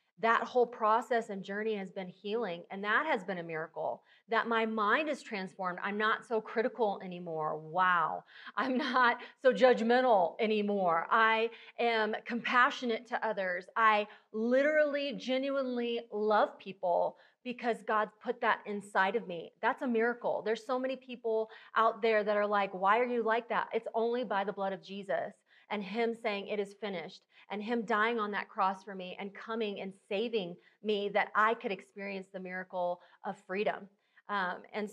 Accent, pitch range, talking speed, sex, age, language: American, 200-235 Hz, 170 wpm, female, 30-49, English